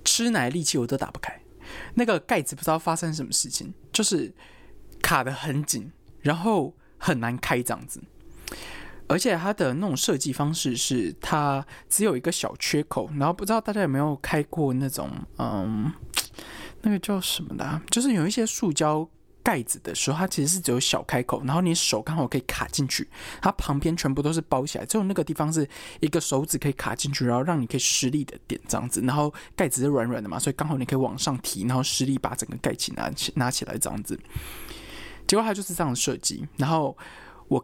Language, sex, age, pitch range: Chinese, male, 20-39, 130-175 Hz